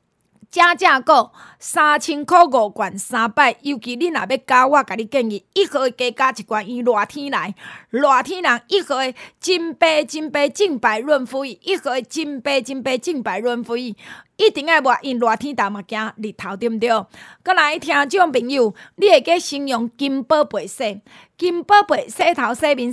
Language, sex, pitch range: Chinese, female, 230-315 Hz